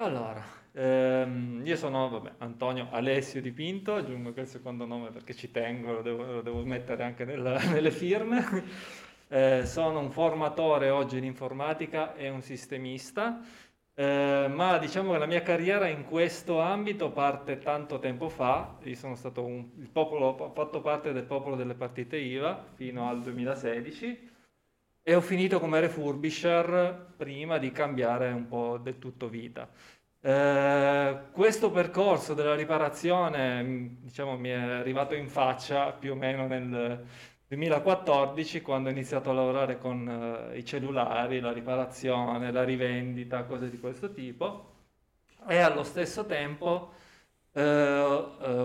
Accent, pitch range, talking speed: native, 125-155 Hz, 145 wpm